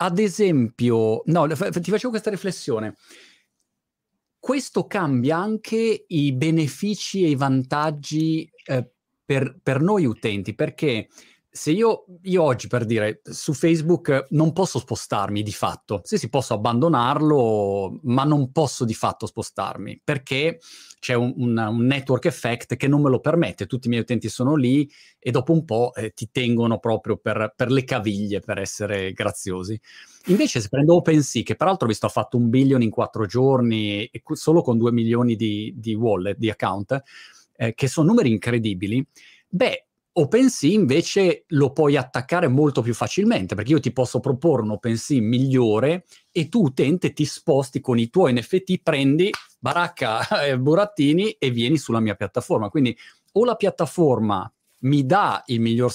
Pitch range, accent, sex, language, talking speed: 115-155 Hz, native, male, Italian, 160 wpm